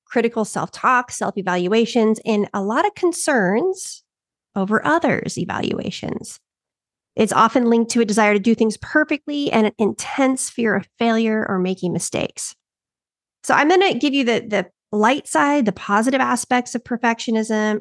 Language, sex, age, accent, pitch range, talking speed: English, female, 30-49, American, 195-235 Hz, 150 wpm